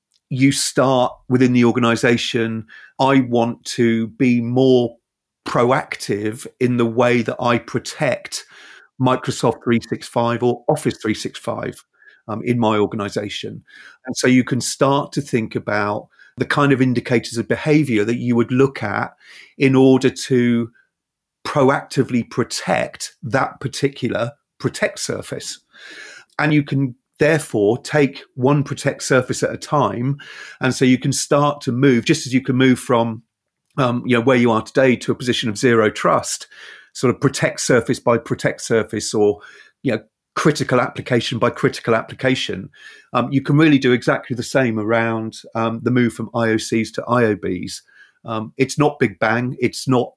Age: 40-59